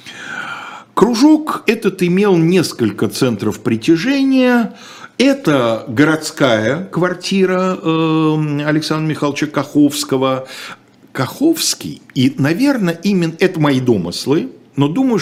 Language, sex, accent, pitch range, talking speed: Russian, male, native, 115-185 Hz, 85 wpm